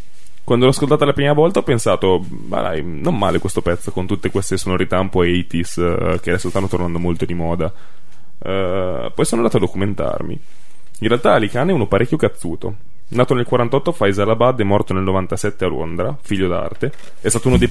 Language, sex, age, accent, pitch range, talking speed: Italian, male, 10-29, native, 95-115 Hz, 205 wpm